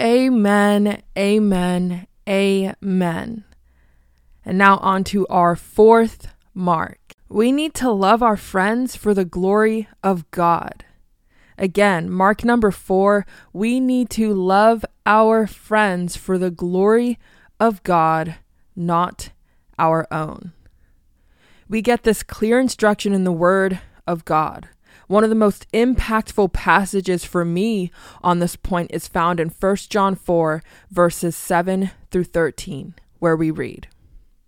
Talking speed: 125 wpm